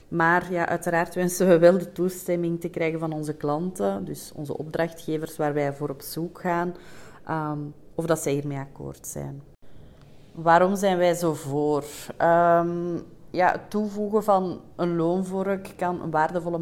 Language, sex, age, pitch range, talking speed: Dutch, female, 30-49, 160-175 Hz, 160 wpm